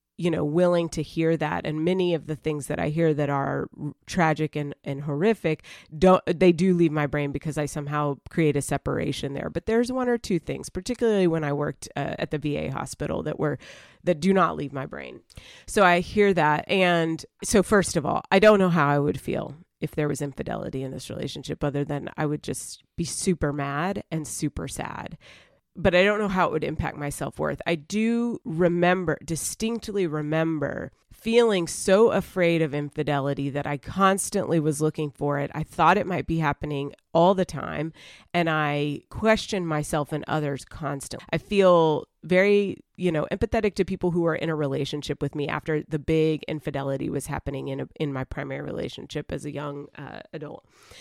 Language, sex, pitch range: English, female, 145-180 Hz